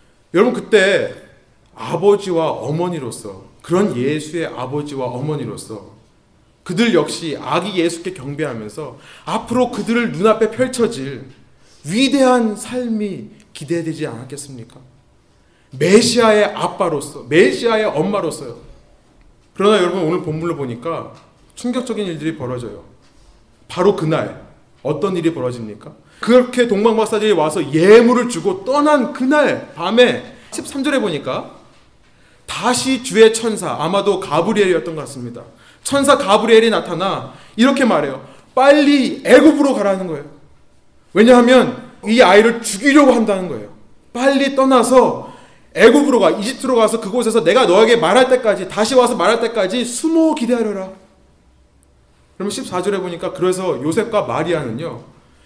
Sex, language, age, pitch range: male, Korean, 30-49, 155-245 Hz